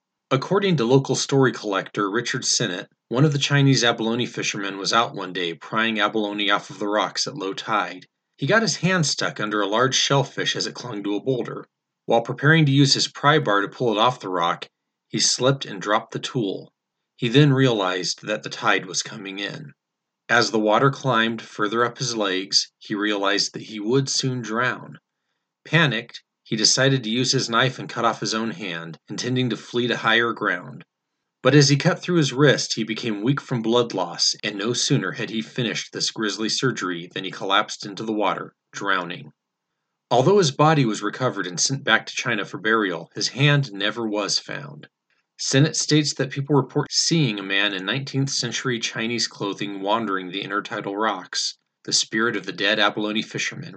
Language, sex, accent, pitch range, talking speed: English, male, American, 105-135 Hz, 195 wpm